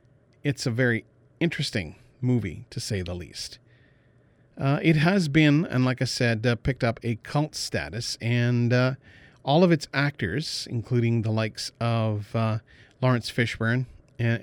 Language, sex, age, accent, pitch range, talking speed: English, male, 40-59, American, 115-145 Hz, 155 wpm